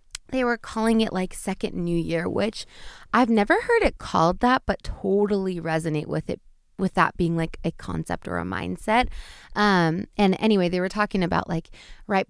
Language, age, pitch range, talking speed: English, 20-39, 175-240 Hz, 185 wpm